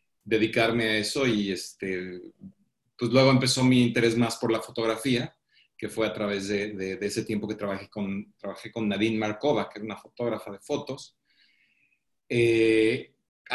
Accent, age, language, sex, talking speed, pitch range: Mexican, 40-59, English, male, 165 wpm, 105-125 Hz